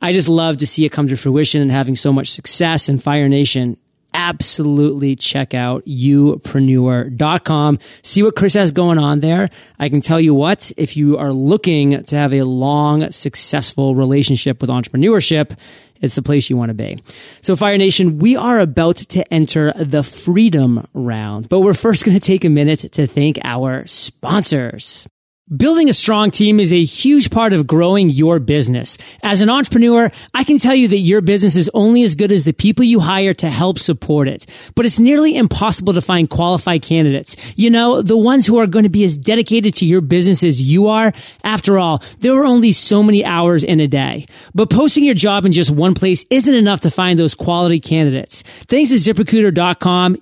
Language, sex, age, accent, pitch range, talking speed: English, male, 30-49, American, 145-210 Hz, 195 wpm